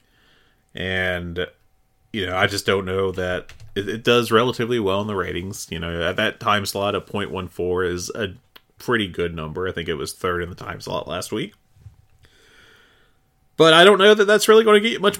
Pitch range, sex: 90-120 Hz, male